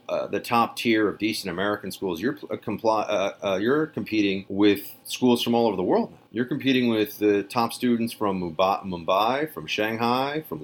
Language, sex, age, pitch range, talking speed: English, male, 30-49, 100-125 Hz, 190 wpm